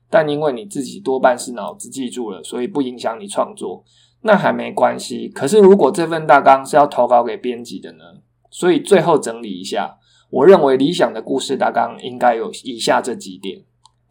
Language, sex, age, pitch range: Chinese, male, 20-39, 120-170 Hz